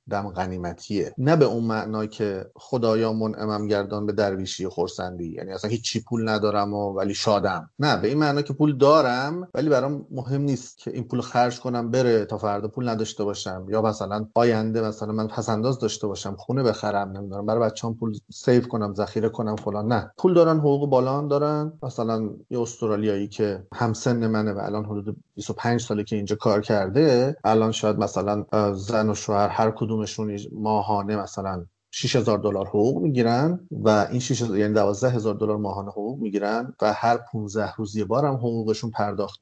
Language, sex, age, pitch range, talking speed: Persian, male, 30-49, 105-130 Hz, 175 wpm